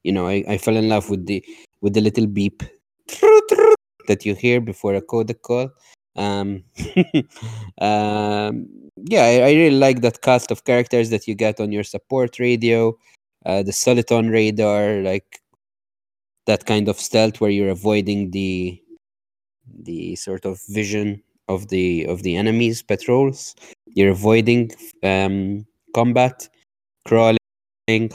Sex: male